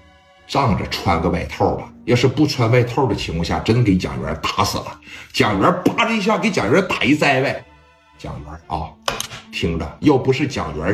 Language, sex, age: Chinese, male, 60-79